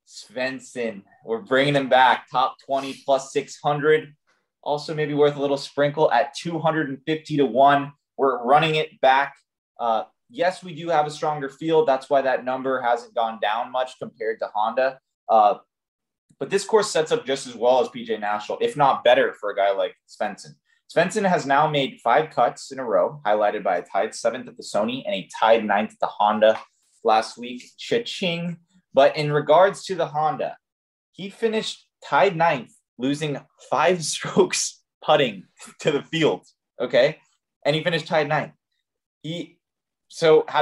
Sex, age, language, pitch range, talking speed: male, 20-39, English, 130-160 Hz, 175 wpm